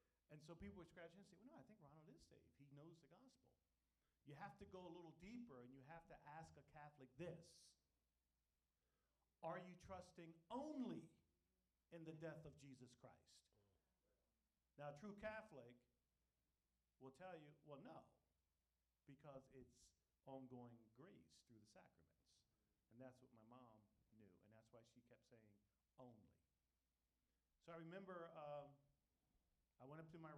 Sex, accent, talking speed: male, American, 155 wpm